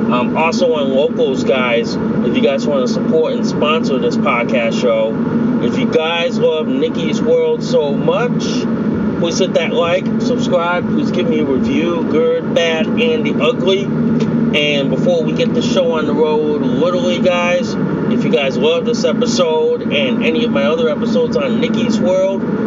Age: 30-49